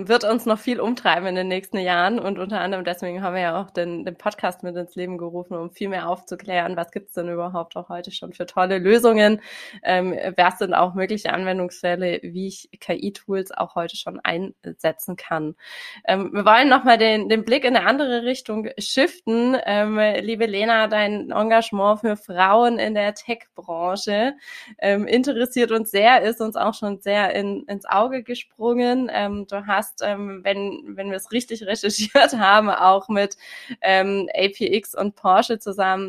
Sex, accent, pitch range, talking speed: female, German, 185-225 Hz, 175 wpm